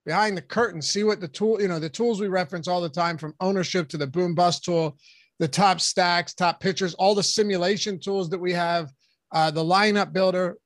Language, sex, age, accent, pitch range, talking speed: English, male, 30-49, American, 160-195 Hz, 220 wpm